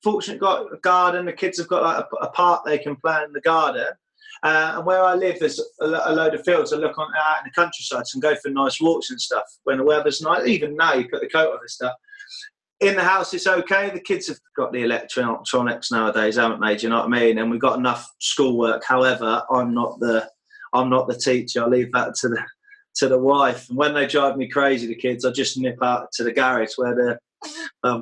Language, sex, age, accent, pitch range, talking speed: English, male, 20-39, British, 130-220 Hz, 245 wpm